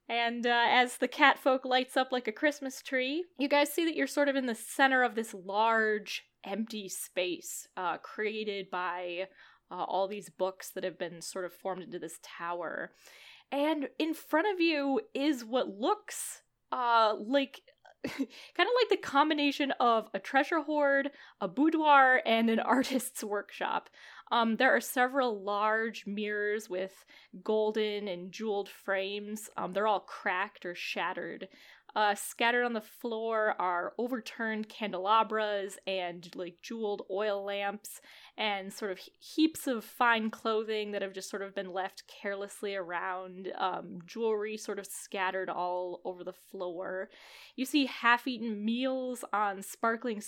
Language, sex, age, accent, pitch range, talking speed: English, female, 10-29, American, 195-260 Hz, 155 wpm